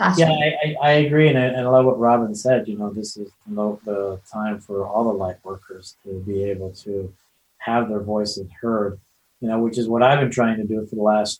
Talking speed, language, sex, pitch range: 230 wpm, English, male, 110-135 Hz